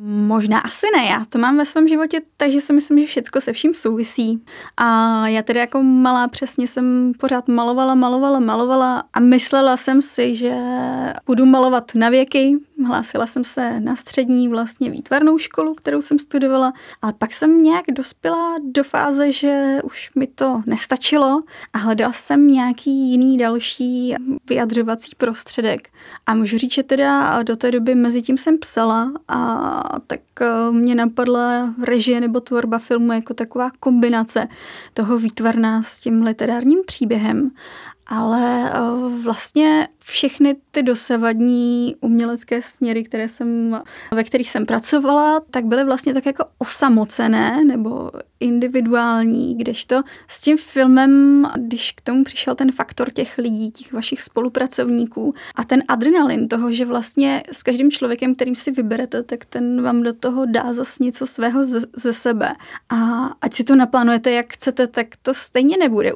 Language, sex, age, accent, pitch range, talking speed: Czech, female, 20-39, native, 235-270 Hz, 150 wpm